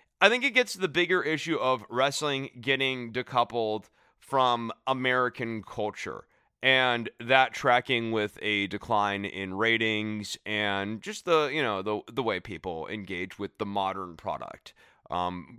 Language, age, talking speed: English, 30-49, 145 wpm